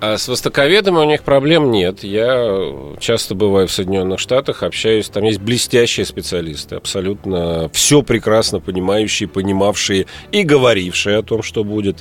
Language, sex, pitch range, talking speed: Russian, male, 95-135 Hz, 145 wpm